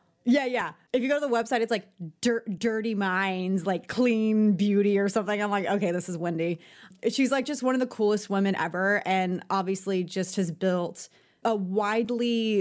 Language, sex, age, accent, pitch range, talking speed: English, female, 30-49, American, 190-225 Hz, 185 wpm